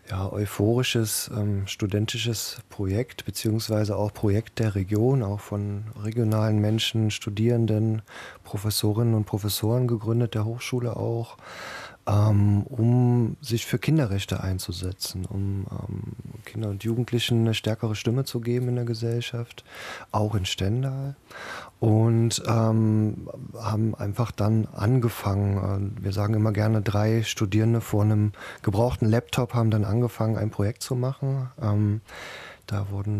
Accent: German